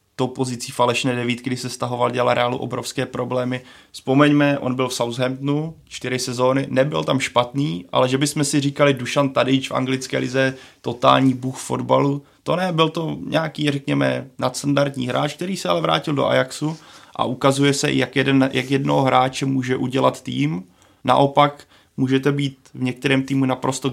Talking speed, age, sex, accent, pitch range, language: 165 wpm, 20-39, male, native, 125-135 Hz, Czech